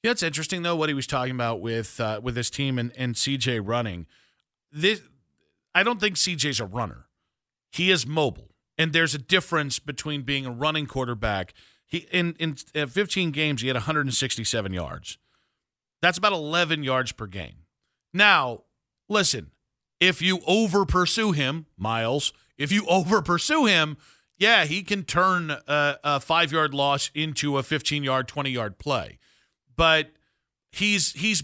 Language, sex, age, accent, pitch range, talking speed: English, male, 40-59, American, 135-180 Hz, 150 wpm